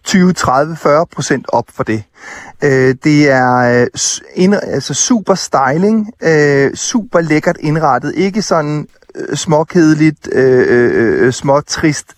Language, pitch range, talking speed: Danish, 125-165 Hz, 90 wpm